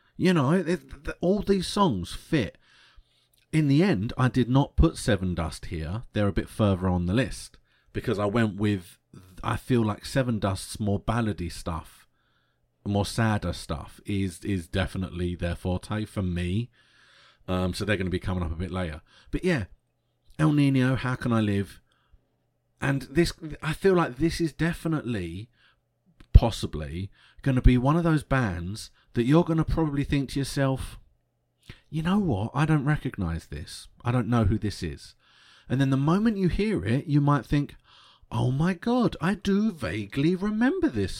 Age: 30-49